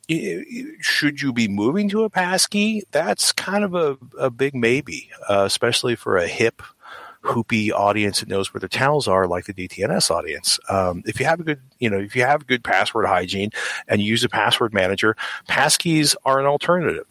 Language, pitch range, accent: English, 100-135 Hz, American